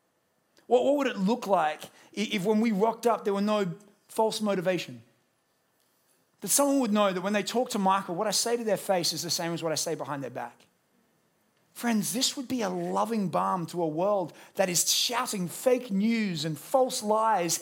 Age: 30-49